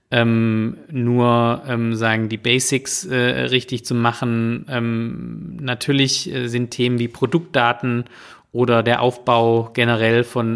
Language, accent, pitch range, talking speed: German, German, 115-130 Hz, 125 wpm